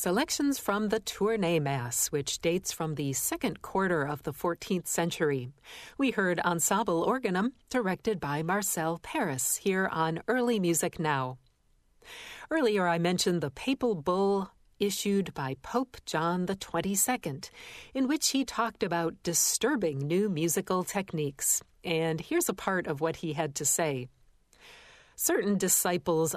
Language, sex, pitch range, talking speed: English, female, 160-215 Hz, 135 wpm